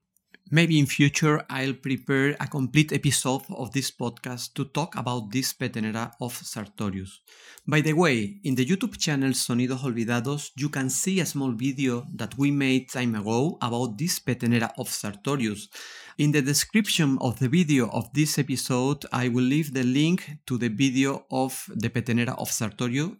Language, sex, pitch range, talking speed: English, male, 125-150 Hz, 170 wpm